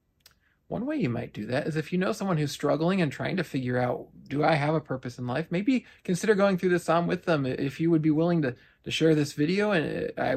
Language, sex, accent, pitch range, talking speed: English, male, American, 125-160 Hz, 260 wpm